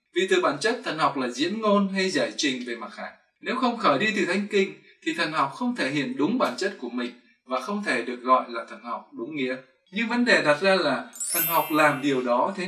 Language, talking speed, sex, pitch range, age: Vietnamese, 260 wpm, male, 145-215 Hz, 20-39